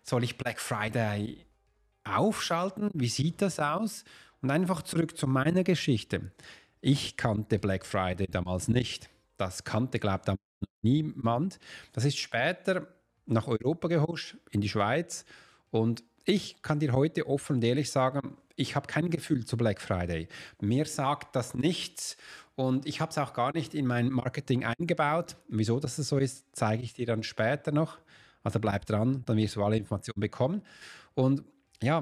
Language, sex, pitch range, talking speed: German, male, 115-155 Hz, 165 wpm